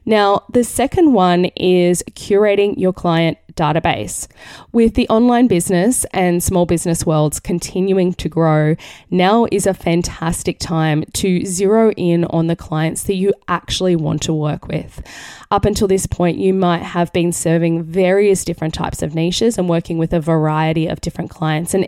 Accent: Australian